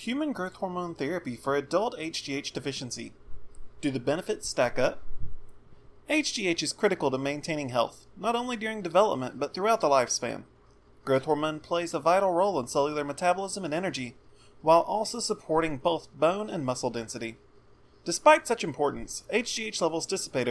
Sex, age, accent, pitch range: male, 30-49, American, 135-190 Hz